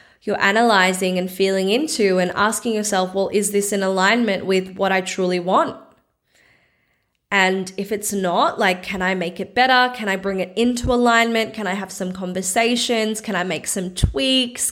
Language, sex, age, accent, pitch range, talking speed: English, female, 10-29, Australian, 190-225 Hz, 180 wpm